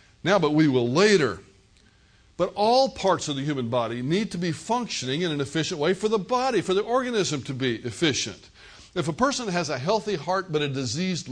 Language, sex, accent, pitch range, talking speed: English, male, American, 135-195 Hz, 205 wpm